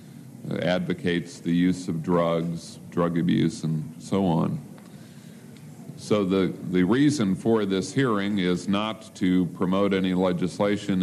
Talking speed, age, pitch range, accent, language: 125 wpm, 50-69, 85-95 Hz, American, English